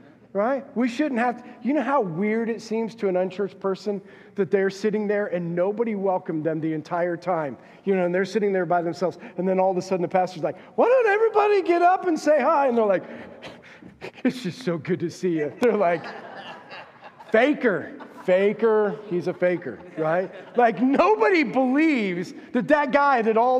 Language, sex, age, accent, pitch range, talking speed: English, male, 40-59, American, 170-235 Hz, 195 wpm